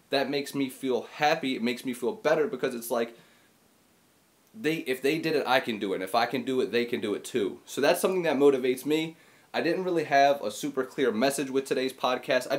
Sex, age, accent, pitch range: male, 30-49, American, 120-150 Hz